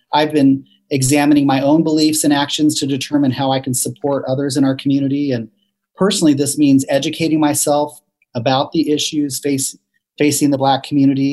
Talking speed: 165 wpm